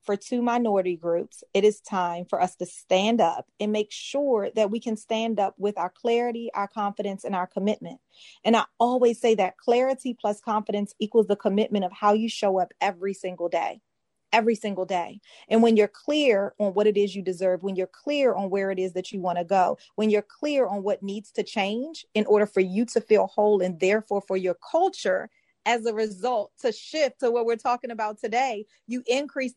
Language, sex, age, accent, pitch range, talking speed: English, female, 30-49, American, 200-245 Hz, 215 wpm